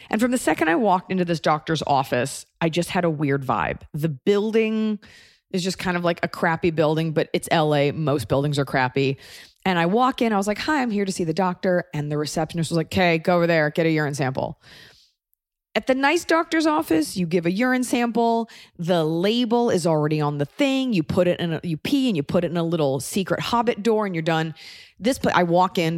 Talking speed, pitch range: 235 wpm, 150-200 Hz